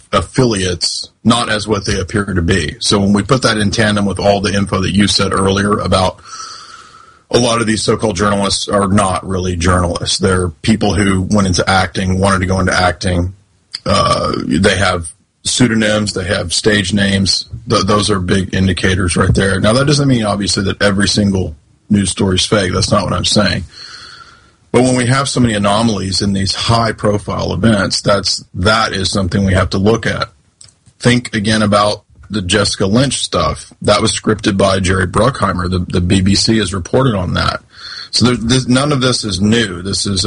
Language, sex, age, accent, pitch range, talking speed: English, male, 30-49, American, 95-110 Hz, 190 wpm